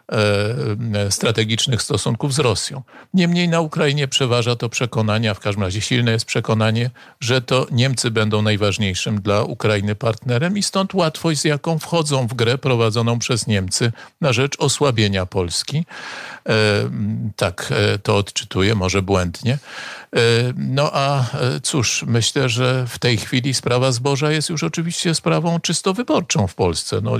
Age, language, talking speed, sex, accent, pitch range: 50-69, Polish, 140 wpm, male, native, 100-135 Hz